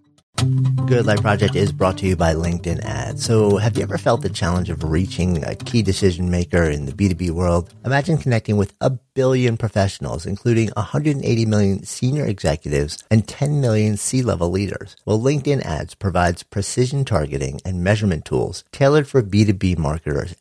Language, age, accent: English, 50-69, American